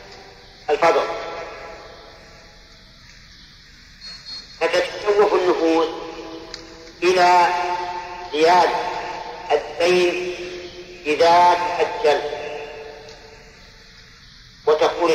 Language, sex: Arabic, male